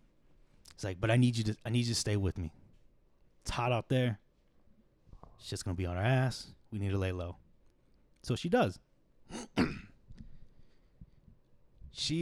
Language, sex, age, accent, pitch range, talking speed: English, male, 30-49, American, 95-120 Hz, 165 wpm